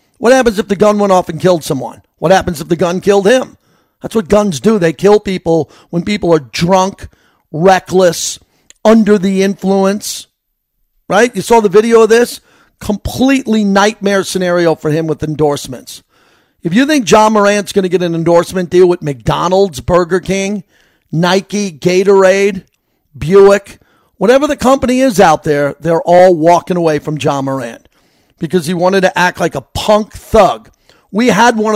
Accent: American